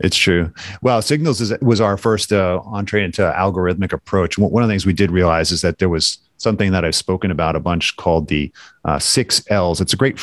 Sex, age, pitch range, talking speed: male, 40-59, 85-110 Hz, 230 wpm